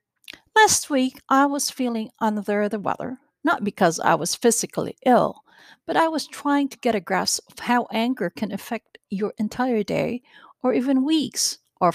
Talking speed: 170 wpm